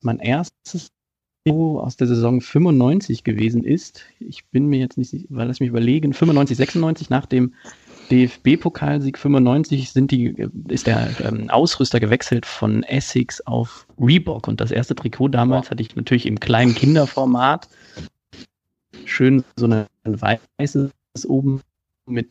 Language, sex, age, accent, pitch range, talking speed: German, male, 30-49, German, 115-135 Hz, 130 wpm